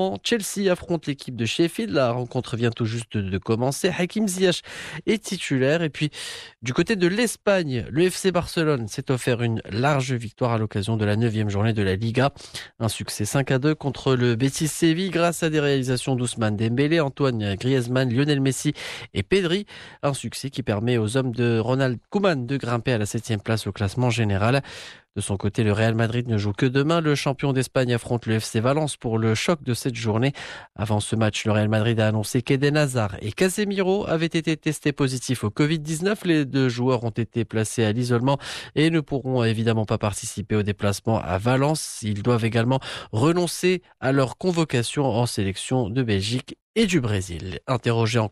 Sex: male